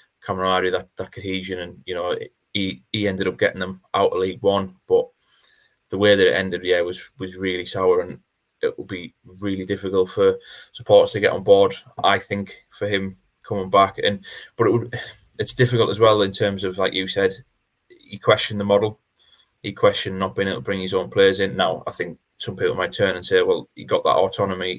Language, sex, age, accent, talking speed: English, male, 20-39, British, 220 wpm